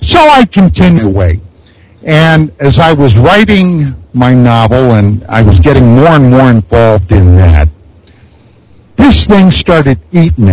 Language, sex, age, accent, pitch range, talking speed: English, male, 60-79, American, 95-150 Hz, 140 wpm